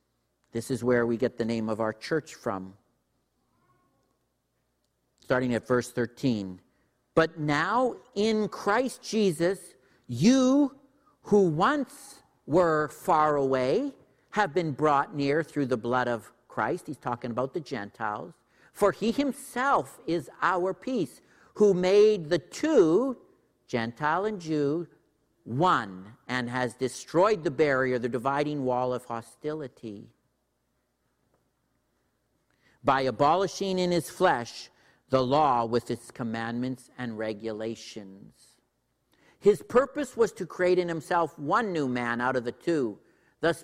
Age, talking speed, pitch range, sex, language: 50-69, 125 wpm, 120-175 Hz, male, English